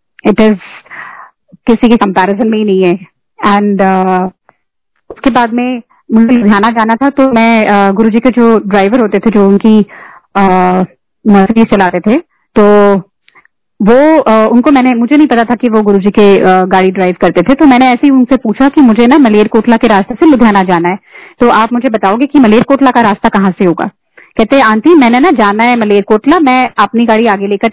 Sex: female